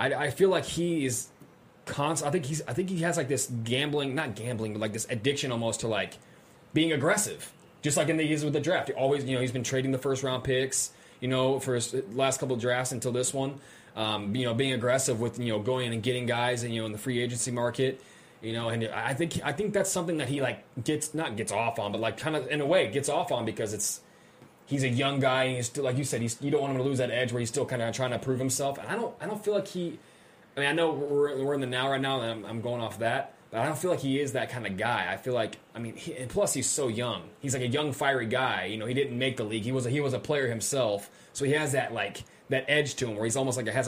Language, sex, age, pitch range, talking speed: English, male, 20-39, 115-140 Hz, 295 wpm